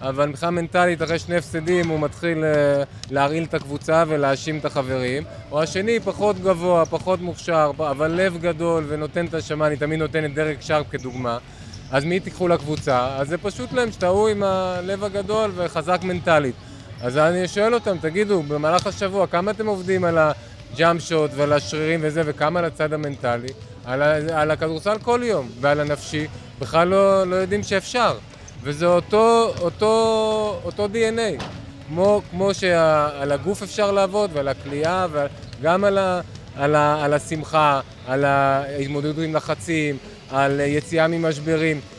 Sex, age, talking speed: male, 20-39, 145 wpm